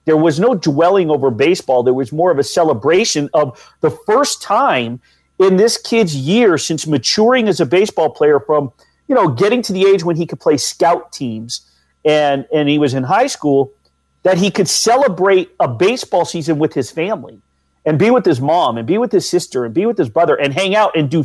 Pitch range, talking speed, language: 140-190 Hz, 215 wpm, English